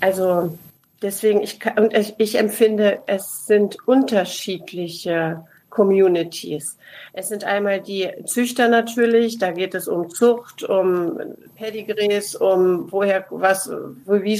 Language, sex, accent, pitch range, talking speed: German, female, German, 185-220 Hz, 115 wpm